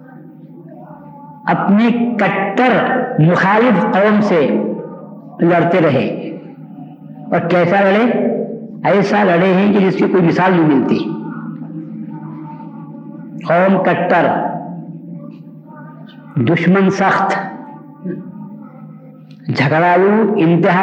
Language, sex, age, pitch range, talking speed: Urdu, female, 50-69, 165-220 Hz, 75 wpm